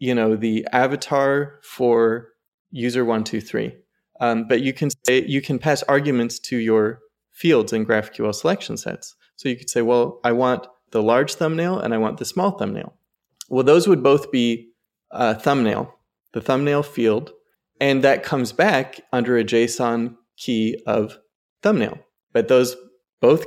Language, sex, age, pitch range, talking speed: English, male, 20-39, 115-140 Hz, 165 wpm